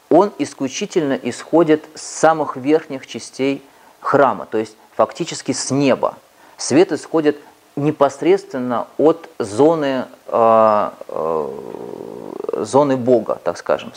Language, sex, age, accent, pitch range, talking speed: Russian, male, 30-49, native, 120-165 Hz, 105 wpm